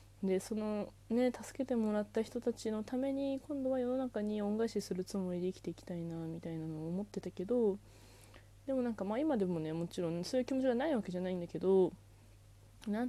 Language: Japanese